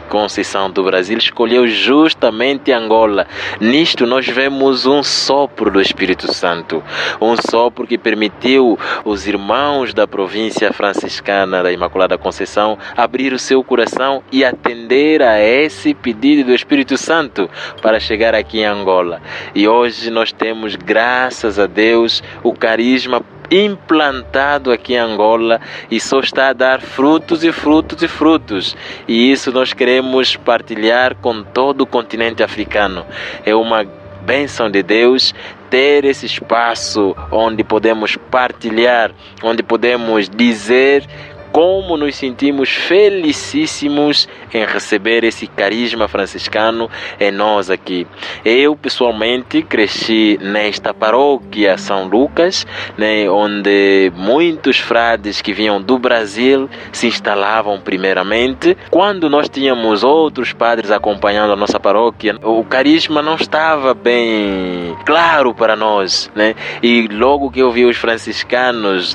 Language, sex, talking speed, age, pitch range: Portuguese, male, 125 wpm, 20-39, 105-135 Hz